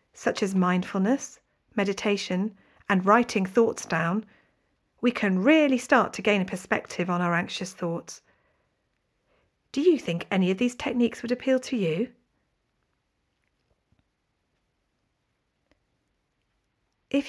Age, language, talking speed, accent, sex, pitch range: 40-59, English, 110 wpm, British, female, 185-245 Hz